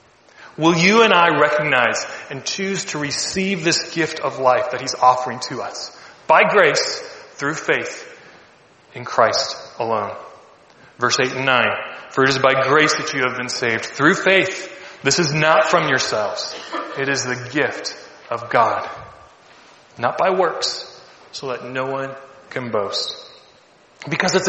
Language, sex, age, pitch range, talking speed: English, male, 30-49, 125-175 Hz, 155 wpm